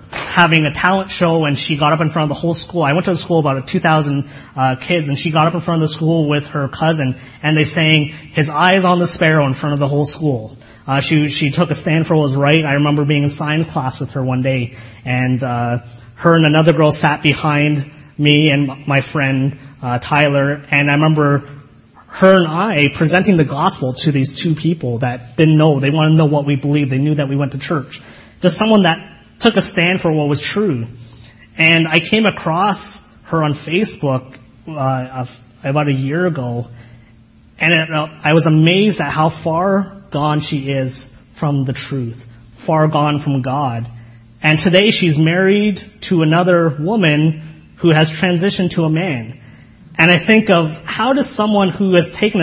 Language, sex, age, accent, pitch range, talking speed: English, male, 30-49, American, 135-170 Hz, 200 wpm